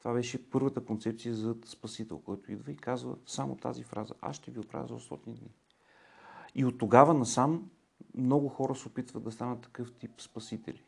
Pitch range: 110-130 Hz